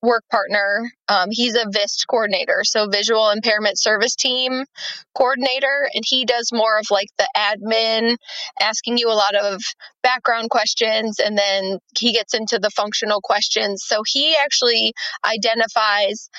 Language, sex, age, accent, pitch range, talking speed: English, female, 20-39, American, 205-245 Hz, 145 wpm